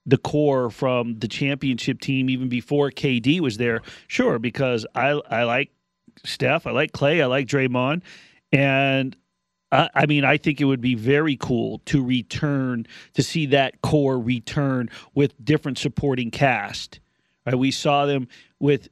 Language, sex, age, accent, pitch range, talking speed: English, male, 40-59, American, 130-175 Hz, 160 wpm